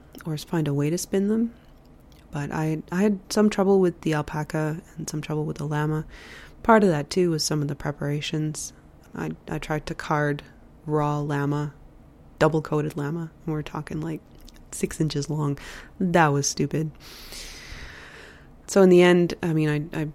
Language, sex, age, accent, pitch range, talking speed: English, female, 20-39, American, 145-175 Hz, 180 wpm